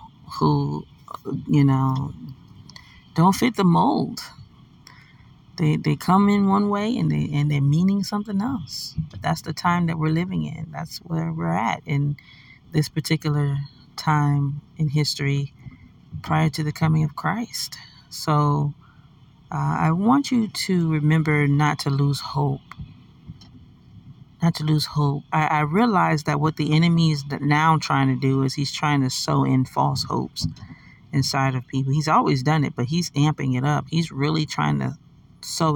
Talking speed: 160 wpm